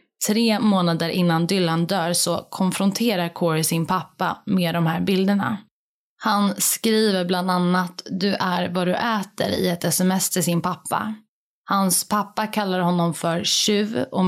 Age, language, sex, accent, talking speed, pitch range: 20-39, Swedish, female, native, 150 wpm, 170-205 Hz